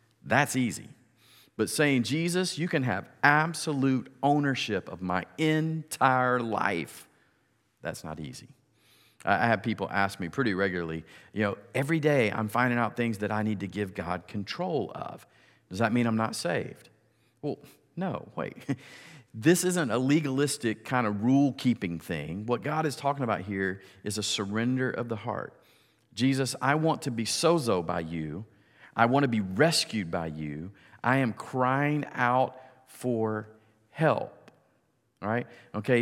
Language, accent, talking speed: English, American, 155 wpm